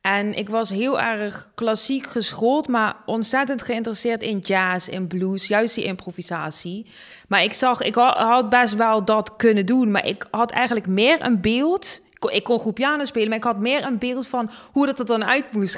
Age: 20-39